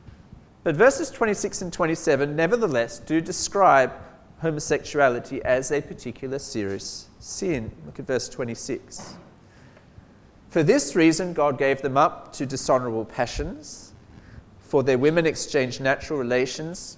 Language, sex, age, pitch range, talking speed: English, male, 40-59, 115-150 Hz, 120 wpm